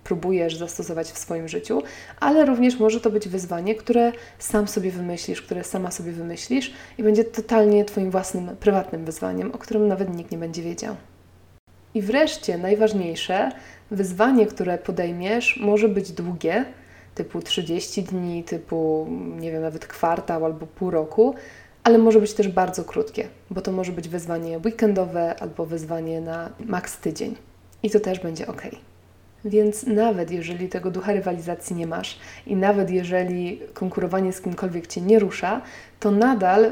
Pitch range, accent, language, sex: 170-215 Hz, native, Polish, female